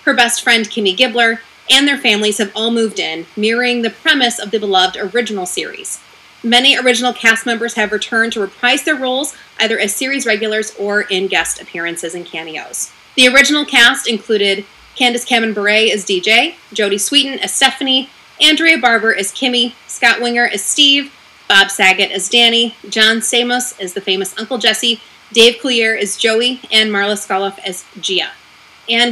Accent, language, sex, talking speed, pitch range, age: American, English, female, 170 wpm, 205-250 Hz, 30-49